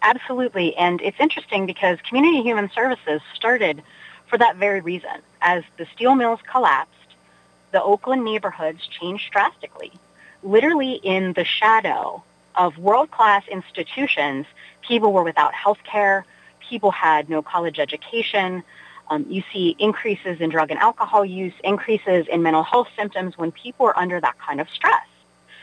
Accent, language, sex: American, English, female